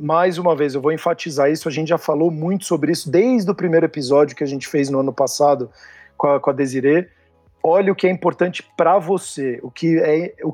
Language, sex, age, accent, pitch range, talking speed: Portuguese, male, 50-69, Brazilian, 150-195 Hz, 220 wpm